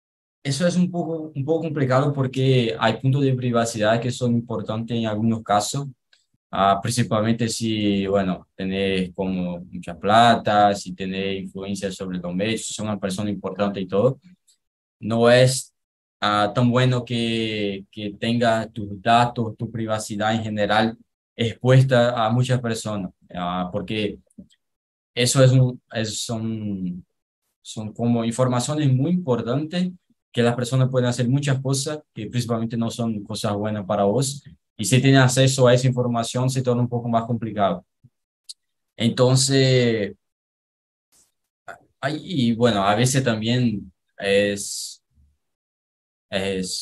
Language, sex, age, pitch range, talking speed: Portuguese, male, 20-39, 100-125 Hz, 135 wpm